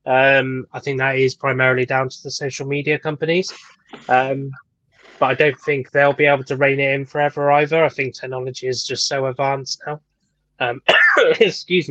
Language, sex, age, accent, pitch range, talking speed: English, male, 20-39, British, 130-150 Hz, 180 wpm